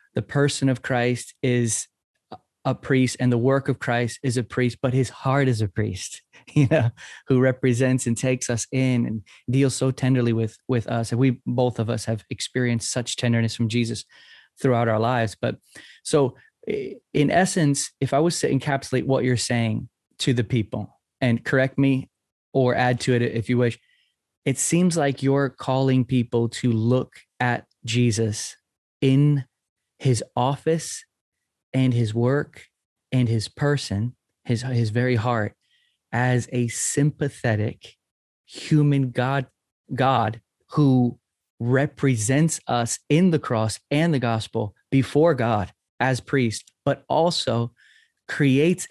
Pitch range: 115-135 Hz